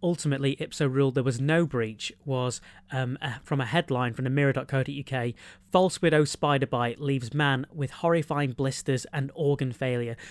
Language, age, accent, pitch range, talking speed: English, 30-49, British, 130-150 Hz, 155 wpm